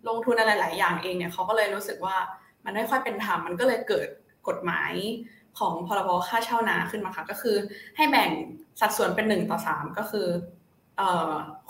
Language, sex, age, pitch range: Thai, female, 20-39, 185-235 Hz